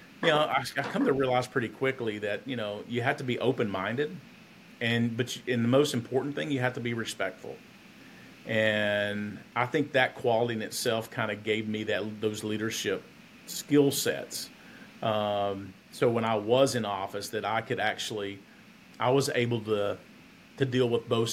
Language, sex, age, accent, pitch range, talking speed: English, male, 40-59, American, 105-125 Hz, 180 wpm